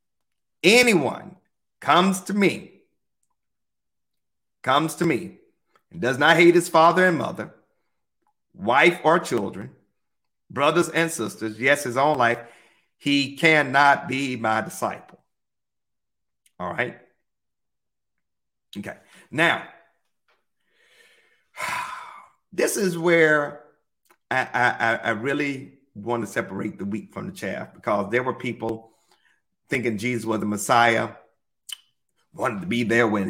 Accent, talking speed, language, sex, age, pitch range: American, 115 wpm, English, male, 50-69, 115-175 Hz